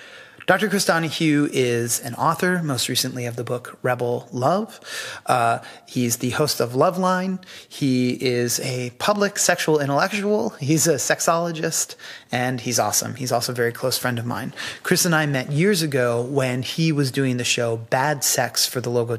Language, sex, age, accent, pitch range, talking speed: English, male, 30-49, American, 120-155 Hz, 175 wpm